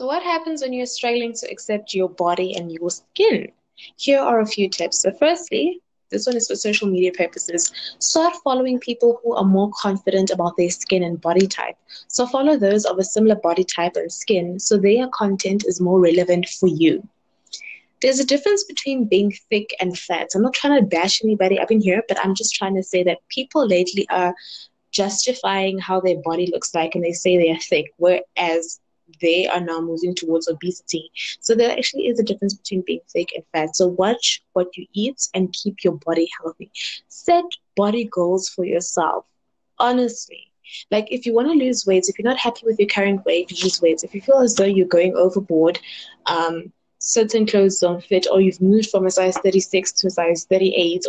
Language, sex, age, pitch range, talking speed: English, female, 20-39, 175-225 Hz, 200 wpm